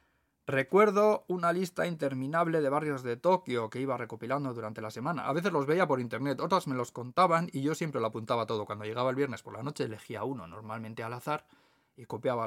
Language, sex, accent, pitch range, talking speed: Spanish, male, Spanish, 115-155 Hz, 210 wpm